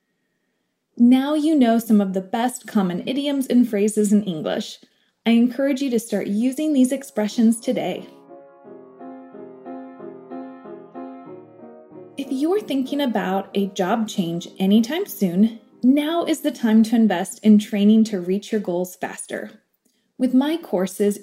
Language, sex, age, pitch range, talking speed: English, female, 20-39, 200-265 Hz, 135 wpm